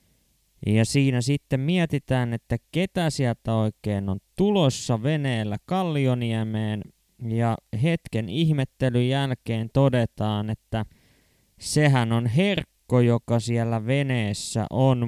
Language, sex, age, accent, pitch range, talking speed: Finnish, male, 20-39, native, 105-135 Hz, 100 wpm